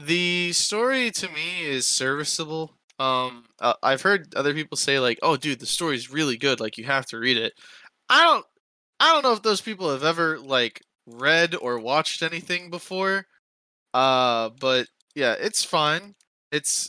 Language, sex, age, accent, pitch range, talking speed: English, male, 20-39, American, 120-155 Hz, 170 wpm